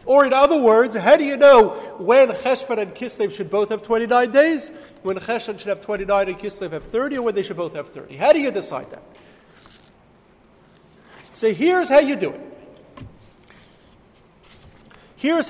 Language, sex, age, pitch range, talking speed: English, male, 40-59, 190-265 Hz, 175 wpm